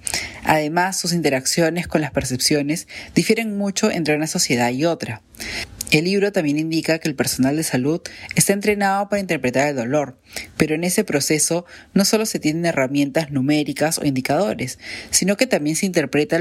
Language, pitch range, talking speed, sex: Spanish, 135-175 Hz, 165 wpm, female